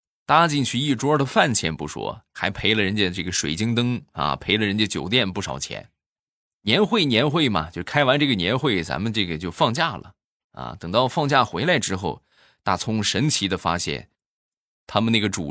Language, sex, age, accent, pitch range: Chinese, male, 20-39, native, 90-145 Hz